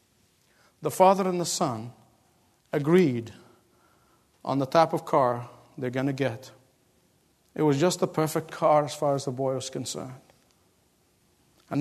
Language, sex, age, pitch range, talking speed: English, male, 50-69, 130-180 Hz, 145 wpm